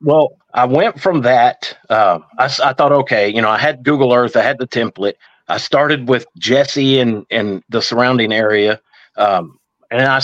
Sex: male